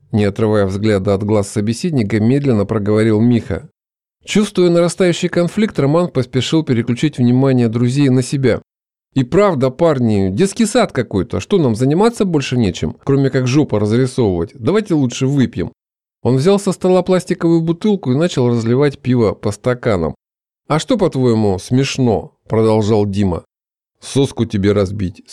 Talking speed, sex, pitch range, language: 135 wpm, male, 110-155 Hz, Russian